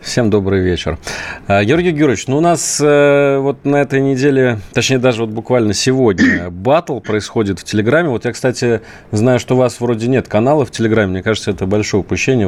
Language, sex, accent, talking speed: Russian, male, native, 185 wpm